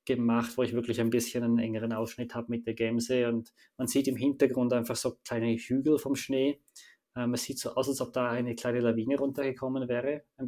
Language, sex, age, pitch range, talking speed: German, male, 20-39, 115-130 Hz, 220 wpm